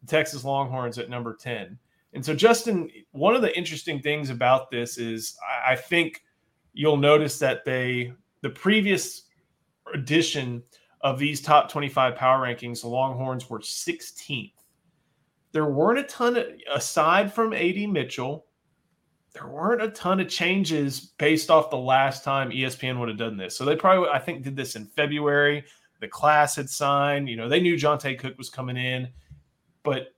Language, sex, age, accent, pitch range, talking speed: English, male, 30-49, American, 125-160 Hz, 165 wpm